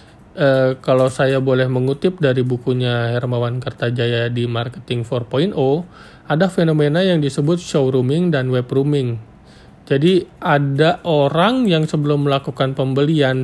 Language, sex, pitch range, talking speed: Indonesian, male, 130-165 Hz, 115 wpm